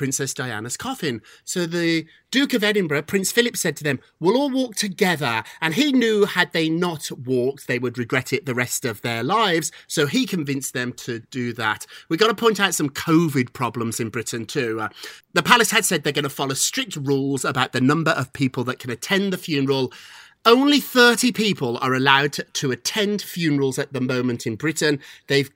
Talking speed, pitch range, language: 205 wpm, 130-185 Hz, English